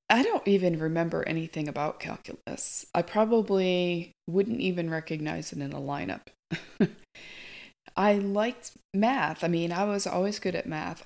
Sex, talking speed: female, 145 wpm